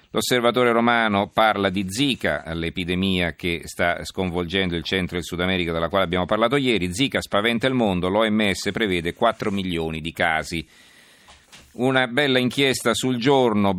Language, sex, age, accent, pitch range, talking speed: Italian, male, 50-69, native, 85-110 Hz, 150 wpm